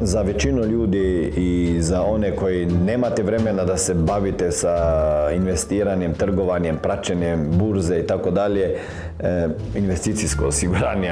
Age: 40-59